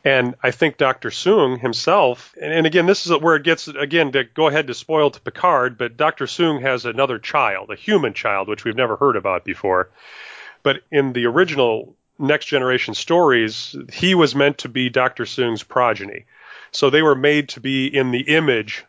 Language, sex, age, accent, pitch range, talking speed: English, male, 30-49, American, 115-140 Hz, 190 wpm